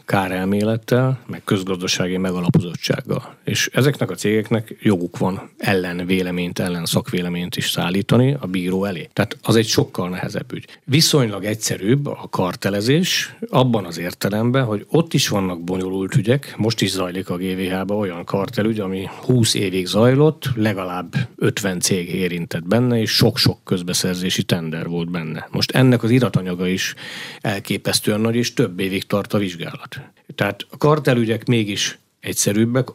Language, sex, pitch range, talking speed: Hungarian, male, 95-120 Hz, 145 wpm